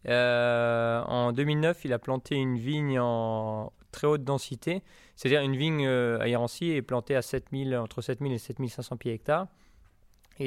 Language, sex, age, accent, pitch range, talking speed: French, male, 20-39, French, 115-140 Hz, 170 wpm